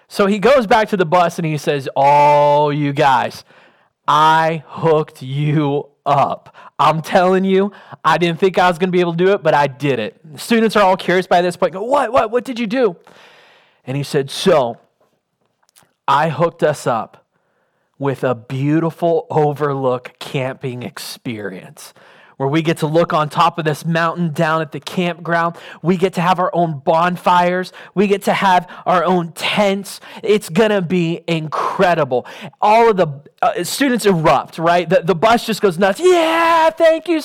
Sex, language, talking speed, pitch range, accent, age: male, English, 180 wpm, 165-210 Hz, American, 20-39